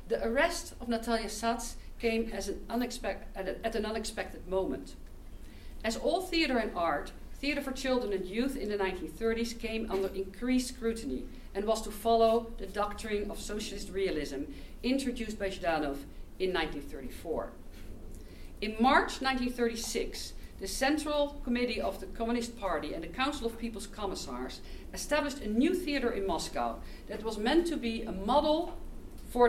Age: 50-69